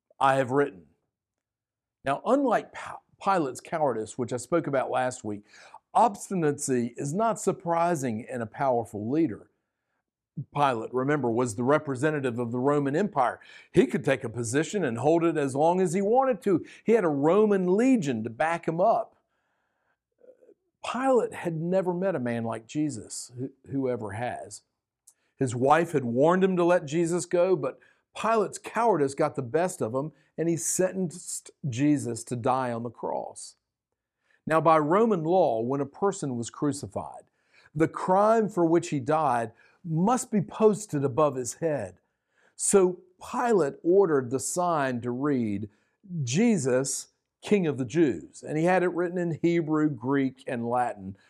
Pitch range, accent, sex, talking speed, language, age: 125-180 Hz, American, male, 155 wpm, English, 50-69